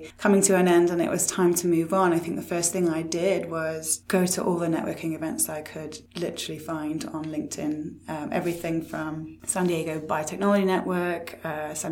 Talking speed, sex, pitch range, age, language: 200 wpm, female, 160-190 Hz, 20-39, English